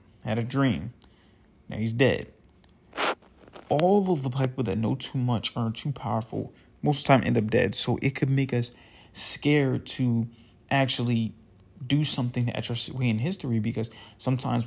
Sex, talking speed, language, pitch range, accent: male, 170 wpm, English, 110-130 Hz, American